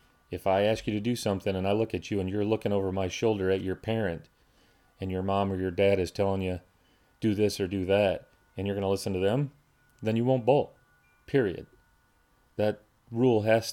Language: English